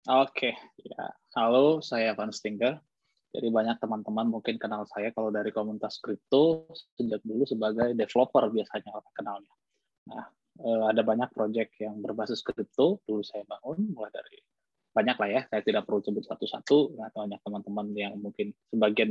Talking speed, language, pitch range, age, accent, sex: 155 wpm, Indonesian, 110-150 Hz, 20-39, native, male